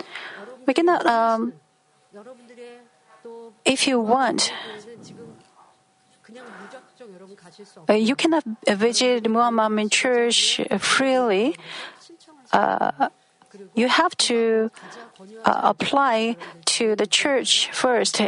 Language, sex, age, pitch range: Korean, female, 40-59, 200-240 Hz